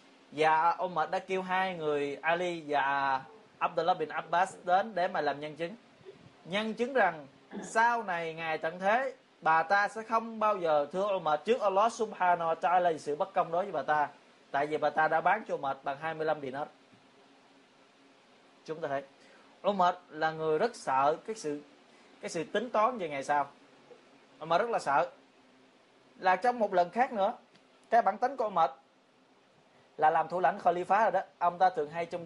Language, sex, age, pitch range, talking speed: Vietnamese, male, 20-39, 145-185 Hz, 195 wpm